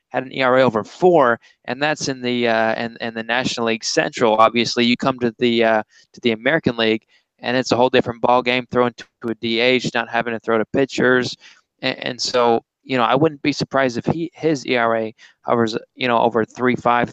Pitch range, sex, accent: 115-135 Hz, male, American